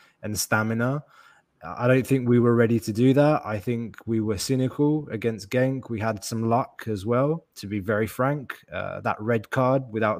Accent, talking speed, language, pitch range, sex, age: British, 195 wpm, English, 105-130 Hz, male, 20-39